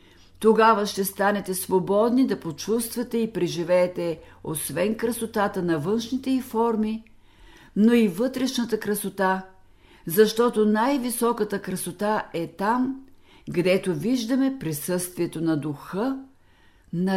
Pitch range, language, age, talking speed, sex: 170-235 Hz, Bulgarian, 50-69, 100 wpm, female